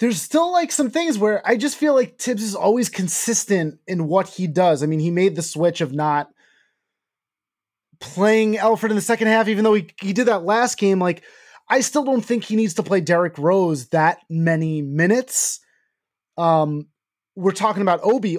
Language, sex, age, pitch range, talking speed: English, male, 20-39, 170-230 Hz, 195 wpm